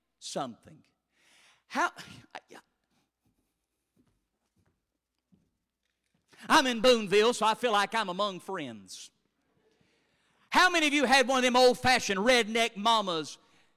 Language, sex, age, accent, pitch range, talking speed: English, male, 40-59, American, 195-265 Hz, 105 wpm